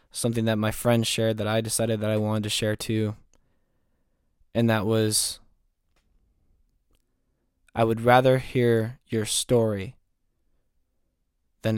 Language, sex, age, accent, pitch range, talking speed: English, male, 20-39, American, 85-115 Hz, 120 wpm